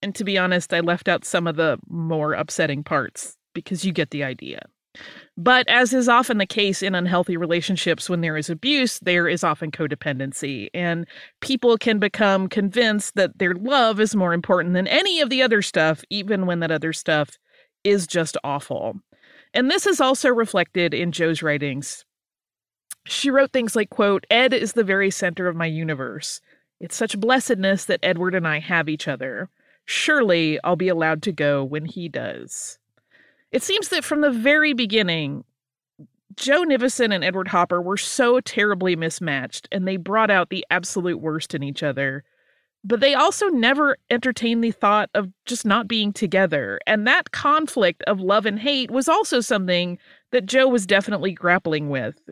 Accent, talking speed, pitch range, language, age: American, 175 wpm, 170-240 Hz, English, 30-49